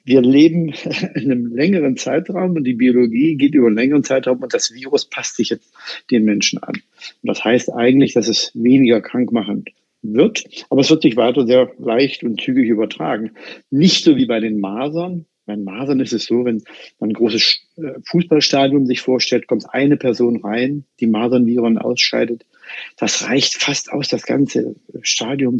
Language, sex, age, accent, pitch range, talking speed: German, male, 50-69, German, 115-150 Hz, 175 wpm